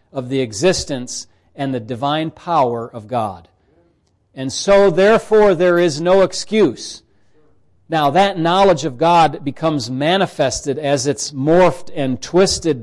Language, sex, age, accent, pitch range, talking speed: English, male, 40-59, American, 135-175 Hz, 130 wpm